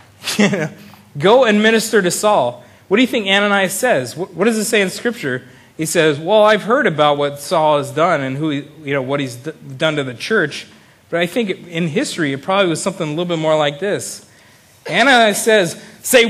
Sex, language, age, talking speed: male, English, 30-49, 210 wpm